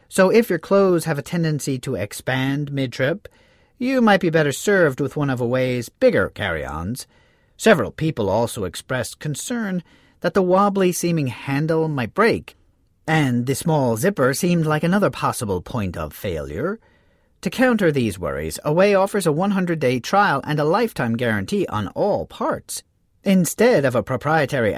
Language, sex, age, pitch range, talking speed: English, male, 40-59, 120-175 Hz, 155 wpm